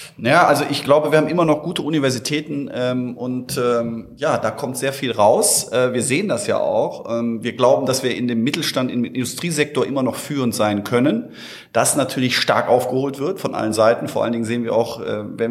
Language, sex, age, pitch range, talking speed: German, male, 30-49, 115-140 Hz, 215 wpm